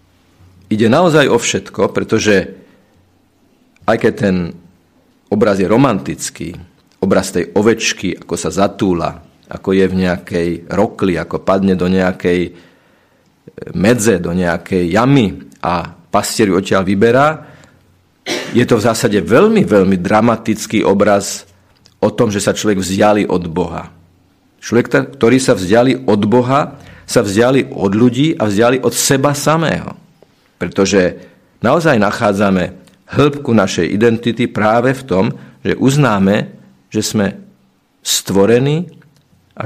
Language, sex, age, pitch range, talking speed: Slovak, male, 50-69, 95-120 Hz, 125 wpm